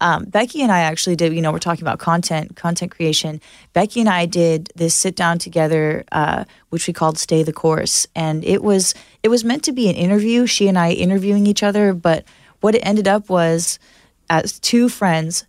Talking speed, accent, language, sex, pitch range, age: 210 wpm, American, English, female, 165-215 Hz, 20-39